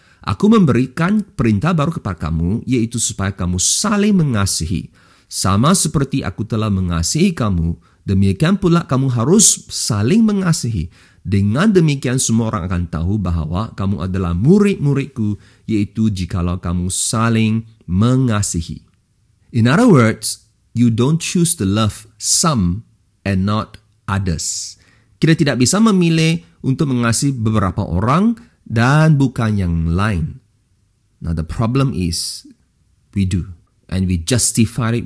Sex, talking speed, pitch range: male, 125 wpm, 95-135 Hz